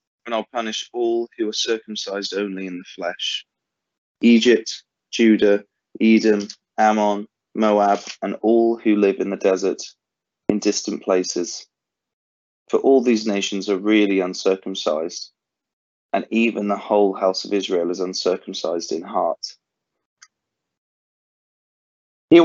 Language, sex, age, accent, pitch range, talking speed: English, male, 30-49, British, 95-115 Hz, 120 wpm